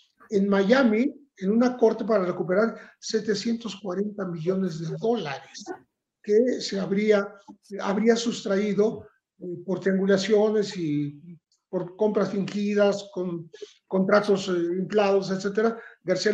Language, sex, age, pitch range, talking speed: Spanish, male, 40-59, 185-230 Hz, 105 wpm